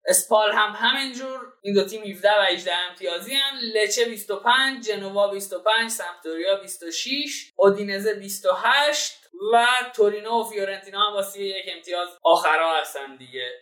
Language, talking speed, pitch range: Persian, 130 wpm, 185-230 Hz